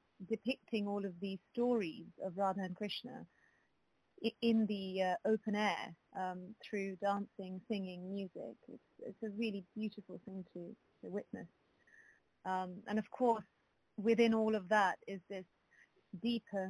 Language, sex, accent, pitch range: English, female, British, 190-220 Hz